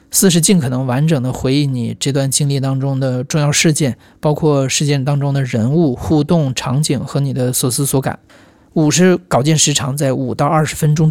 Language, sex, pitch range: Chinese, male, 130-155 Hz